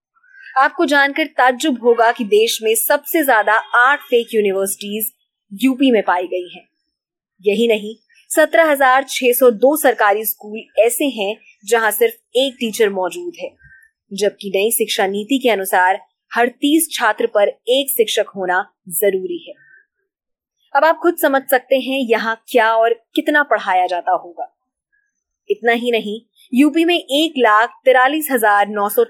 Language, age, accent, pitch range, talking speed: Hindi, 20-39, native, 210-285 Hz, 140 wpm